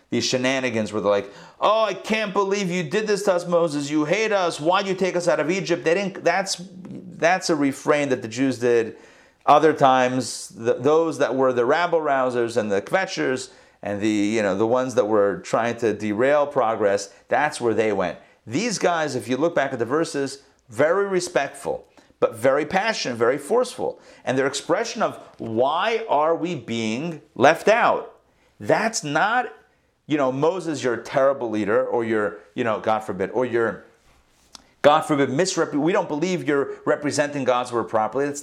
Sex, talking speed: male, 185 wpm